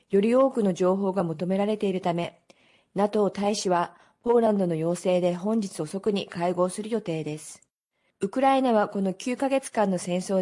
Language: Japanese